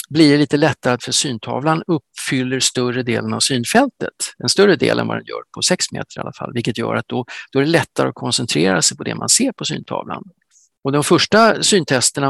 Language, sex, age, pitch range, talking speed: Swedish, male, 50-69, 125-165 Hz, 215 wpm